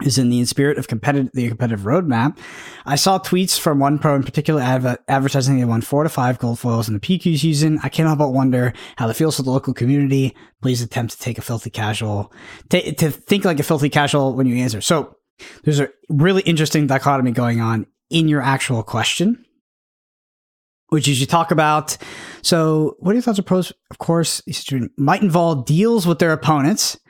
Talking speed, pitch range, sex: 200 wpm, 130-170 Hz, male